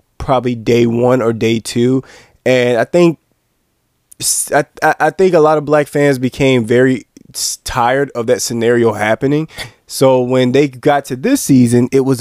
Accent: American